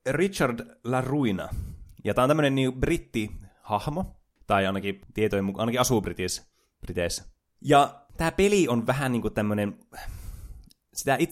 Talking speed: 135 wpm